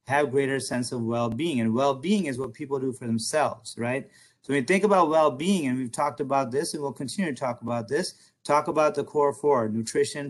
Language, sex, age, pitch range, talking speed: English, male, 30-49, 120-145 Hz, 225 wpm